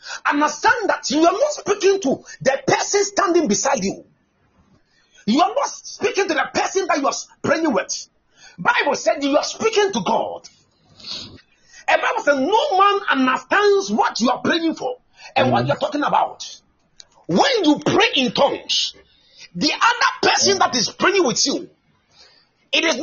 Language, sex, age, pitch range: Japanese, male, 40-59, 260-395 Hz